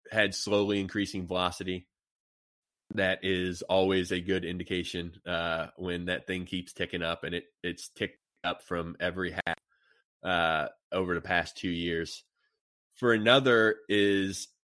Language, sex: English, male